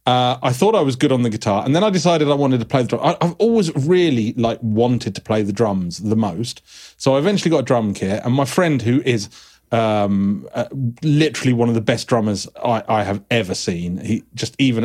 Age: 30-49